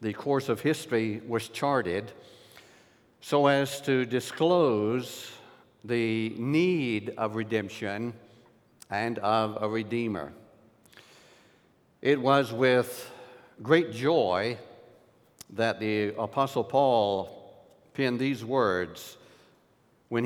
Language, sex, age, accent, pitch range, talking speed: English, male, 60-79, American, 110-135 Hz, 90 wpm